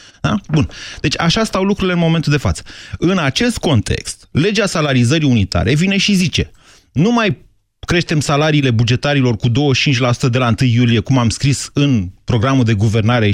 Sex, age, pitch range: male, 30-49, 115-175 Hz